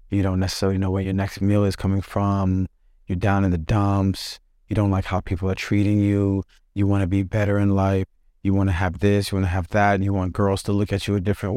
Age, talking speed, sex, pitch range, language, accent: 30-49, 265 wpm, male, 95-110 Hz, English, American